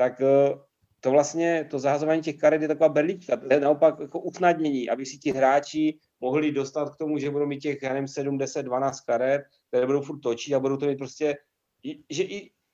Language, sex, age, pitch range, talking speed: Czech, male, 40-59, 120-150 Hz, 200 wpm